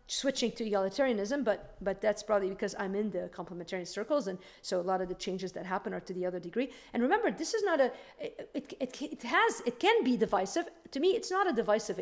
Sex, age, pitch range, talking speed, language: female, 50-69, 195-255 Hz, 235 wpm, English